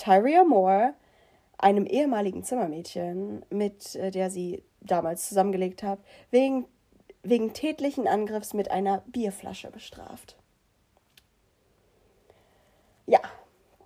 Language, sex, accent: German, female, German